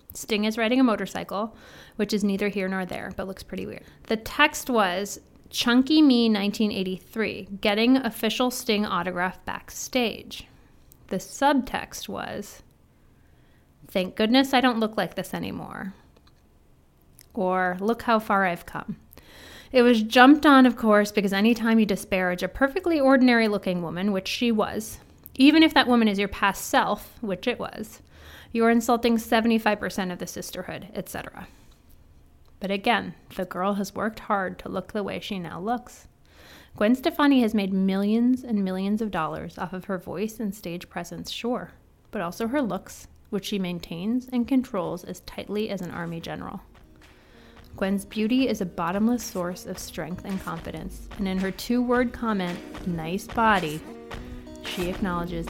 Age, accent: 30-49, American